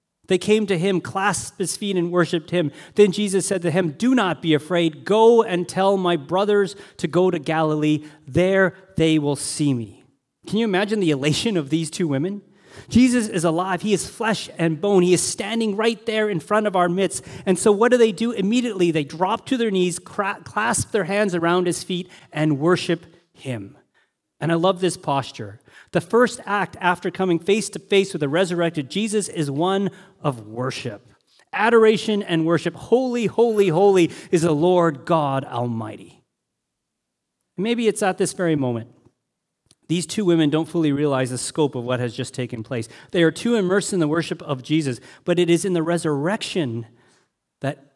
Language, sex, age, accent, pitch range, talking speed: English, male, 30-49, American, 150-195 Hz, 185 wpm